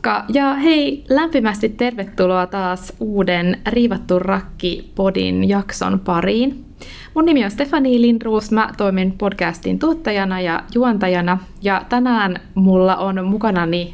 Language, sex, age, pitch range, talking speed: Finnish, female, 20-39, 175-215 Hz, 110 wpm